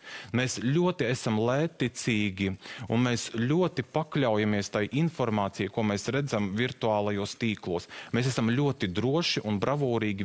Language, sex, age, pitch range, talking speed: English, male, 30-49, 100-125 Hz, 125 wpm